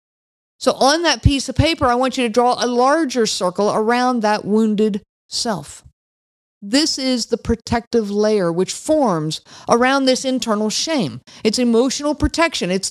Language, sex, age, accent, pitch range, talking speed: English, female, 50-69, American, 200-275 Hz, 155 wpm